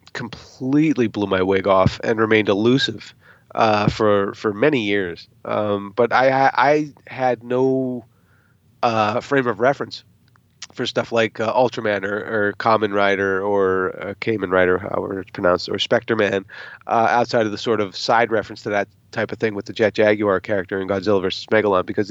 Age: 30-49